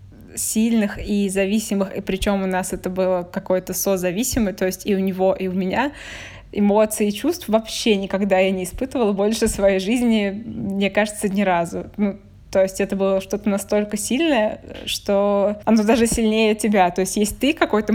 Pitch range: 190-215 Hz